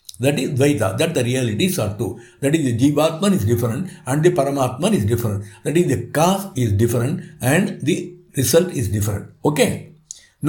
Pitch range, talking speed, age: 125-185 Hz, 175 wpm, 60-79